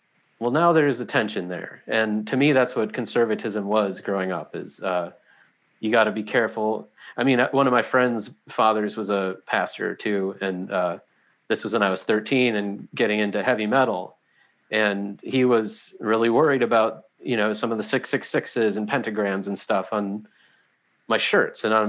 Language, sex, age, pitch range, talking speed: English, male, 30-49, 105-125 Hz, 190 wpm